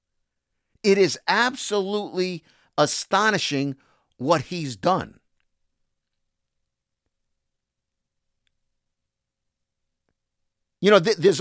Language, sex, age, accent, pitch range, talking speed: English, male, 50-69, American, 110-160 Hz, 60 wpm